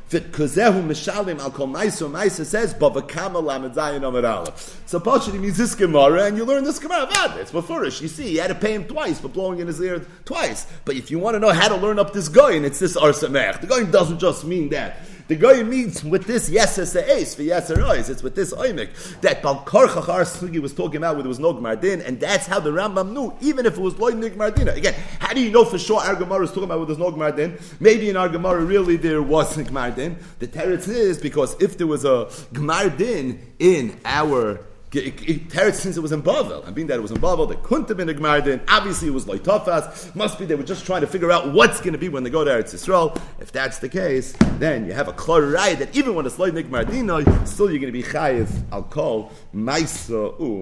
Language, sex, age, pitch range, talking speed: English, male, 30-49, 155-205 Hz, 235 wpm